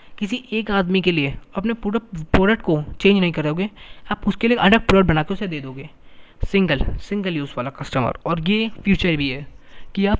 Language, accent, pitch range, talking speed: Hindi, native, 150-195 Hz, 200 wpm